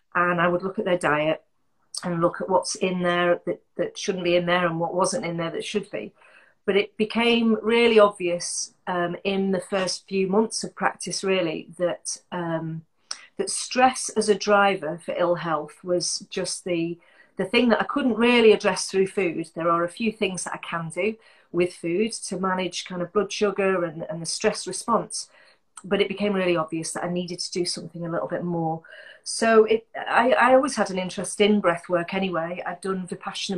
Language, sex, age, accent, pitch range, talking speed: English, female, 40-59, British, 175-205 Hz, 205 wpm